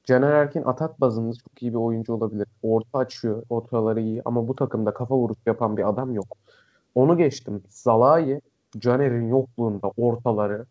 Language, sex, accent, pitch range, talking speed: Turkish, male, native, 110-135 Hz, 155 wpm